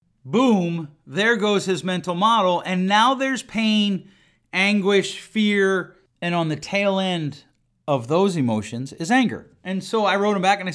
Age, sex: 40-59, male